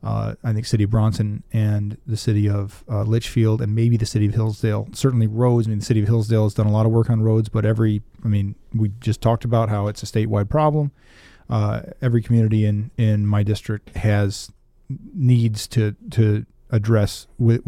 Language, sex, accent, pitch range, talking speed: English, male, American, 105-120 Hz, 205 wpm